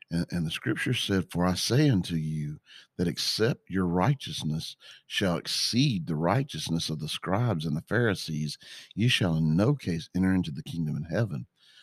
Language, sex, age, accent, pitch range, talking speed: English, male, 50-69, American, 80-105 Hz, 170 wpm